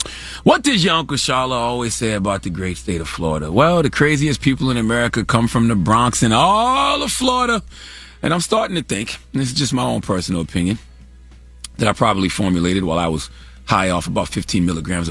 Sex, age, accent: male, 30-49, American